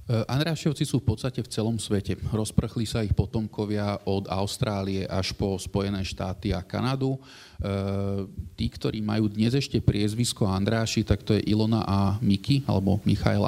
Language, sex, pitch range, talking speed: Slovak, male, 100-115 Hz, 155 wpm